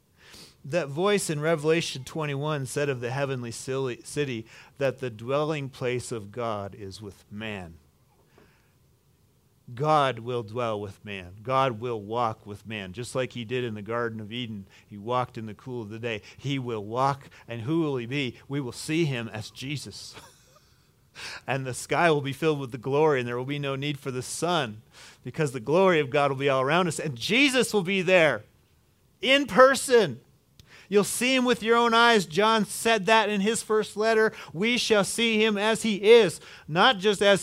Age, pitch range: 40-59, 125-185 Hz